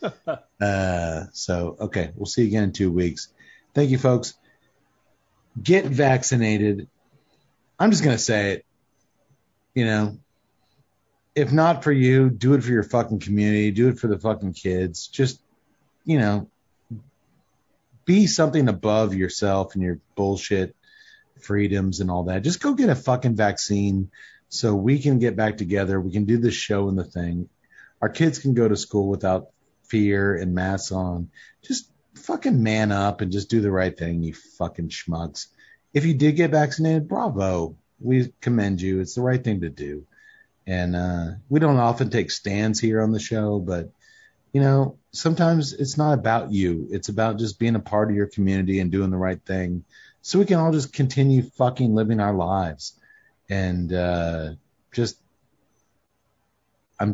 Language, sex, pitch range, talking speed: English, male, 95-130 Hz, 165 wpm